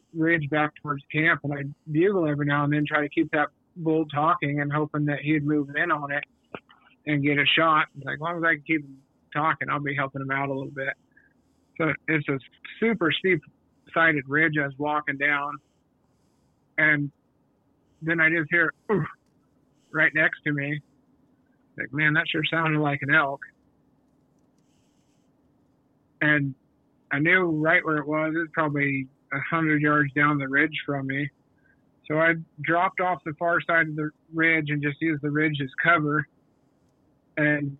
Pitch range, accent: 140-160 Hz, American